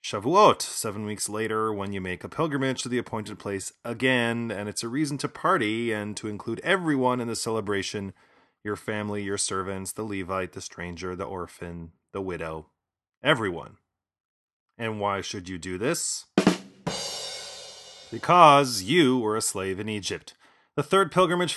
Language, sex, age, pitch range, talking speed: English, male, 30-49, 95-120 Hz, 155 wpm